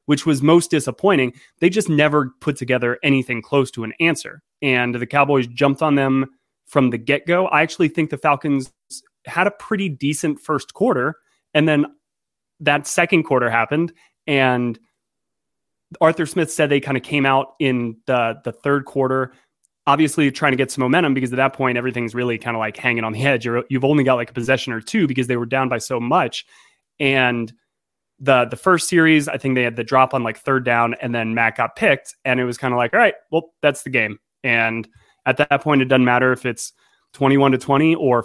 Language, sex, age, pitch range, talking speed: English, male, 30-49, 120-150 Hz, 210 wpm